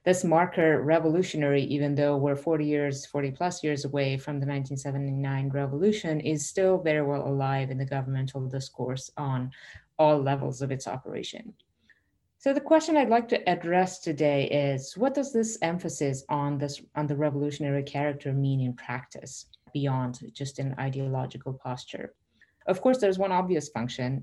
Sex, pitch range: female, 130-155 Hz